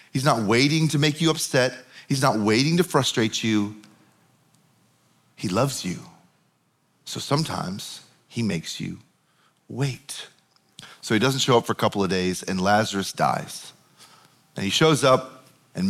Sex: male